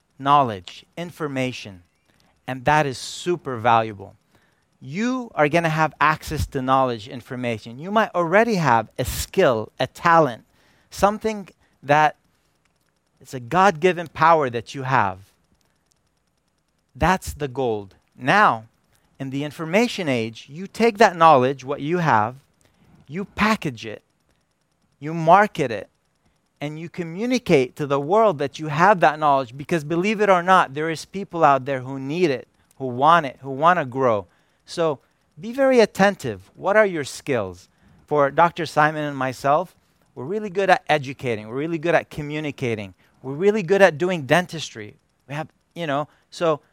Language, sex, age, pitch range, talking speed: English, male, 40-59, 130-180 Hz, 155 wpm